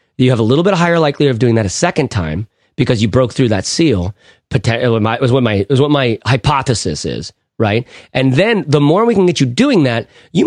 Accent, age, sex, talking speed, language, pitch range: American, 30-49, male, 220 wpm, English, 120-165 Hz